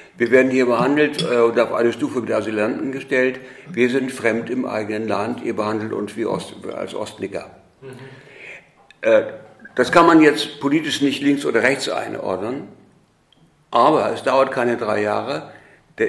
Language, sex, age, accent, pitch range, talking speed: German, male, 60-79, German, 110-135 Hz, 155 wpm